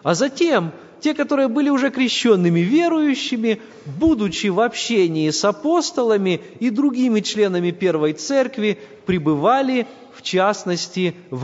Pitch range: 170-260 Hz